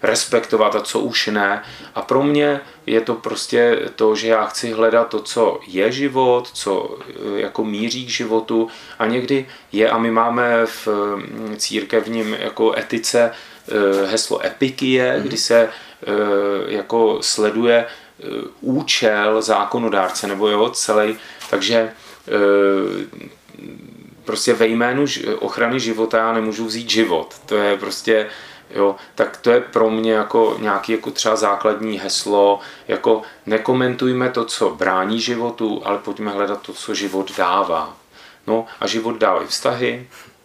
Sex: male